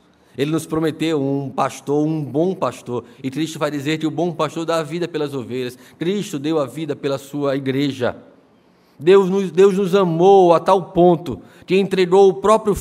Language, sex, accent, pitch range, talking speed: Portuguese, male, Brazilian, 115-155 Hz, 185 wpm